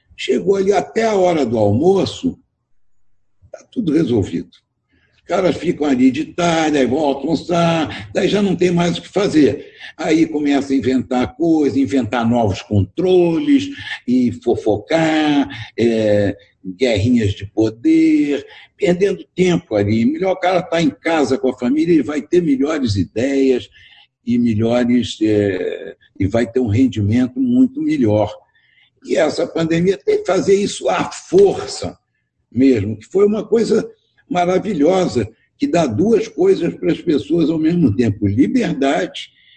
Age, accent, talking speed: 60-79, Brazilian, 145 wpm